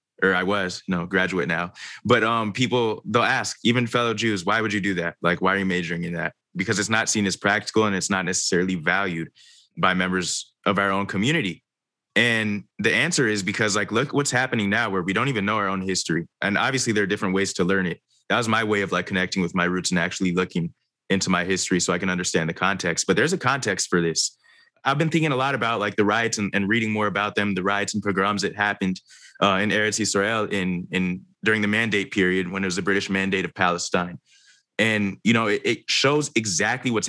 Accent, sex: American, male